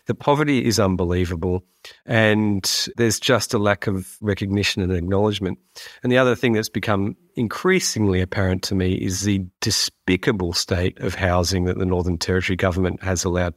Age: 40-59